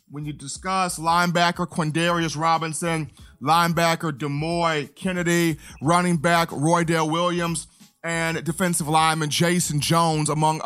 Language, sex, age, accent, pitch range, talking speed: English, male, 30-49, American, 160-185 Hz, 105 wpm